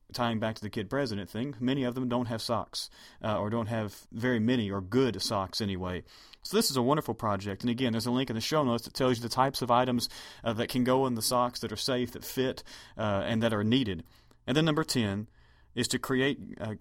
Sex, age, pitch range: male, 30-49, 110-135 Hz